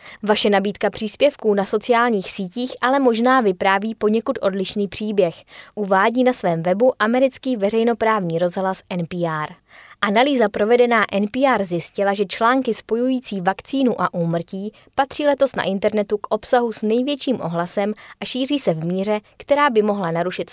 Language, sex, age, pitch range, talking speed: Czech, female, 20-39, 180-240 Hz, 140 wpm